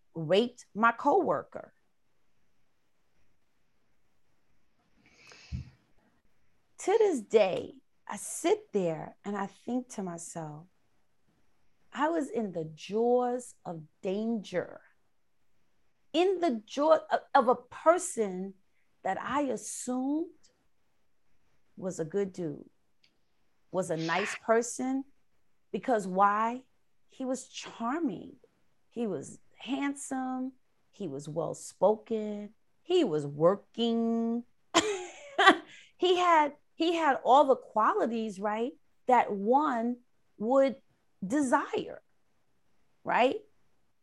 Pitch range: 185-270 Hz